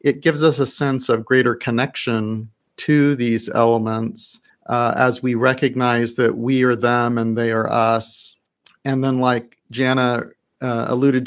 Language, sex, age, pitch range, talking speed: English, male, 40-59, 115-130 Hz, 155 wpm